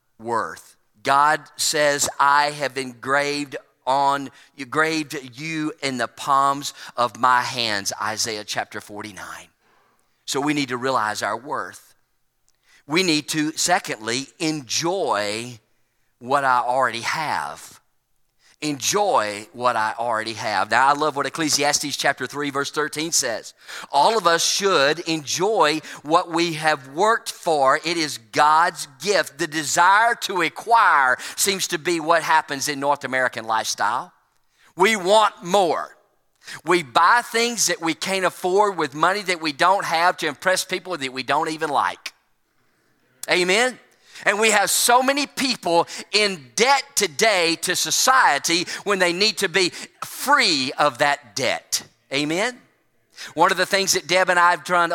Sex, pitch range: male, 140-185 Hz